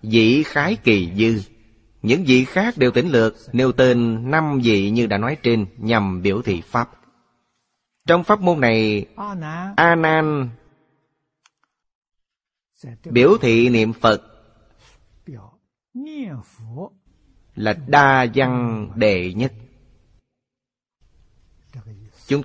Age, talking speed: 30-49, 100 wpm